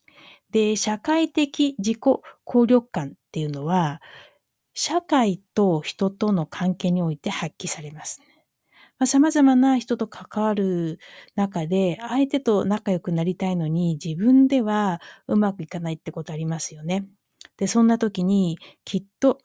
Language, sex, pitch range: Japanese, female, 175-220 Hz